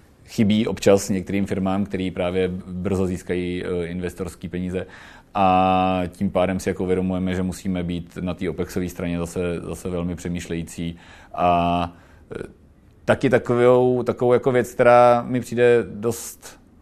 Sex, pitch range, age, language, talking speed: male, 90-100 Hz, 40-59, Czech, 130 wpm